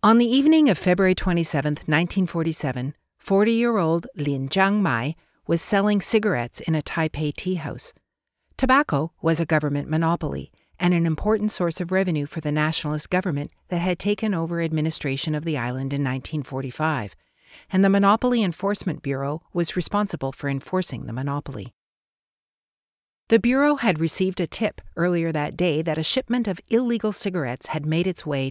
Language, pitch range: English, 150-195 Hz